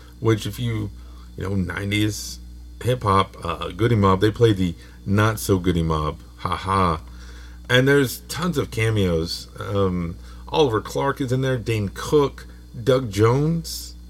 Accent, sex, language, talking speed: American, male, English, 130 wpm